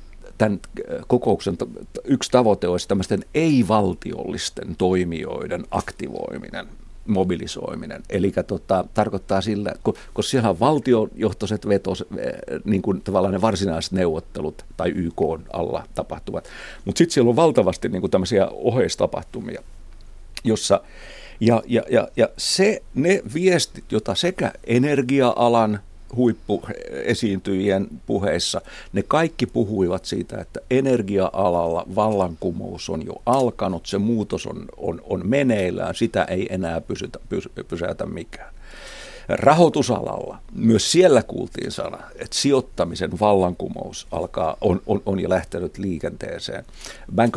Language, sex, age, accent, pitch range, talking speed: Finnish, male, 50-69, native, 90-115 Hz, 110 wpm